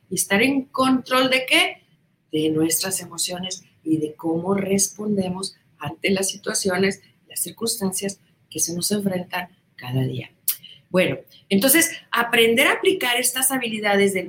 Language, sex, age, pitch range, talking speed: Spanish, female, 40-59, 180-255 Hz, 135 wpm